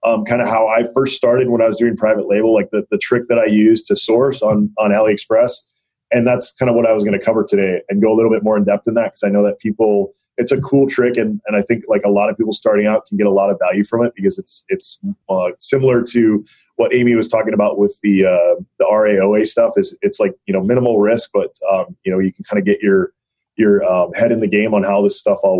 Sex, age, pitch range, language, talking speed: male, 30-49, 105-125 Hz, English, 280 wpm